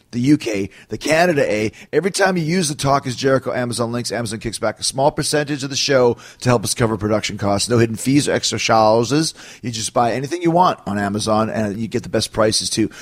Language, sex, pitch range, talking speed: English, male, 110-135 Hz, 240 wpm